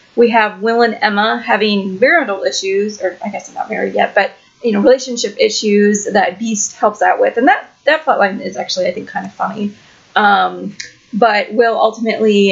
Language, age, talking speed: English, 30-49, 190 wpm